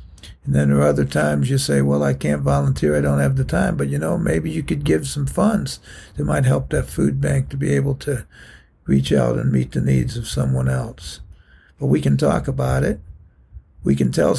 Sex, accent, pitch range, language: male, American, 70-90 Hz, English